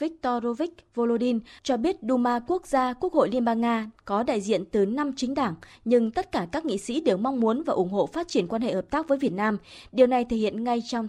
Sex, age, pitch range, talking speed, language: female, 20-39, 210-275 Hz, 250 wpm, Vietnamese